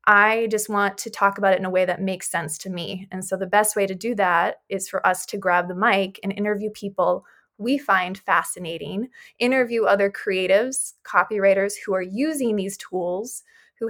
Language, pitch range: English, 190-215 Hz